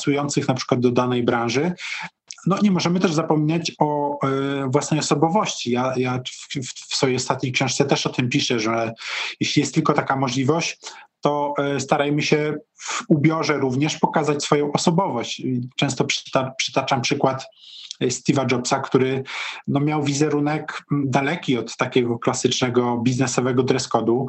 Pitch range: 130-150 Hz